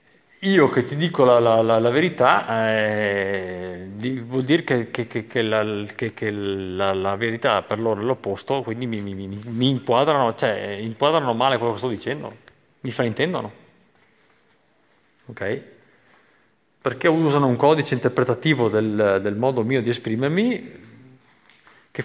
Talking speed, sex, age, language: 140 wpm, male, 30-49, Italian